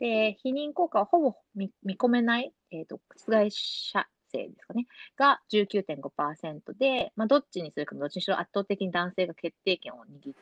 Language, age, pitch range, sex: Japanese, 30-49, 155-240 Hz, female